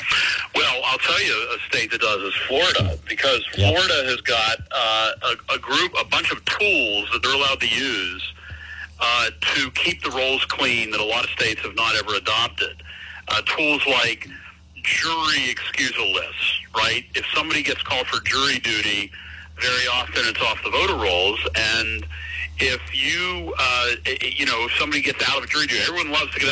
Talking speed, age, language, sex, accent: 185 wpm, 50-69, English, male, American